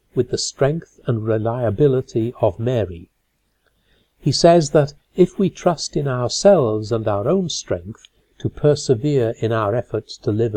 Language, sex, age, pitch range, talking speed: English, male, 60-79, 105-145 Hz, 150 wpm